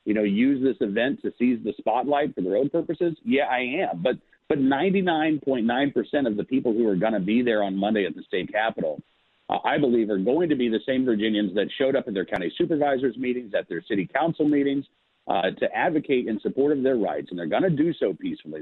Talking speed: 230 wpm